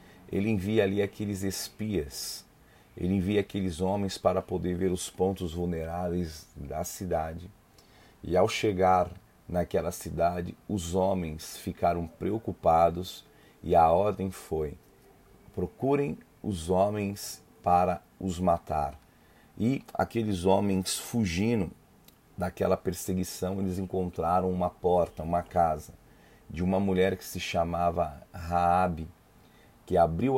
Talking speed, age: 115 wpm, 40-59